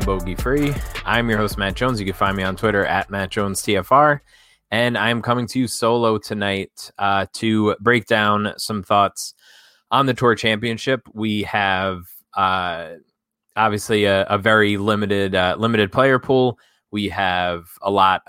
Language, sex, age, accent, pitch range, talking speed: English, male, 20-39, American, 95-115 Hz, 165 wpm